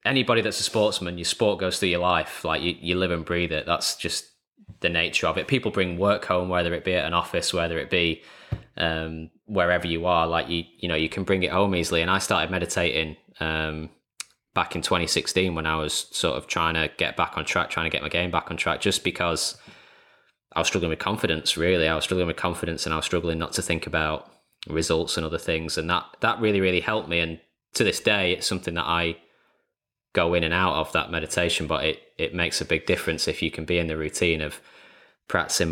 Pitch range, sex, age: 80-95 Hz, male, 10-29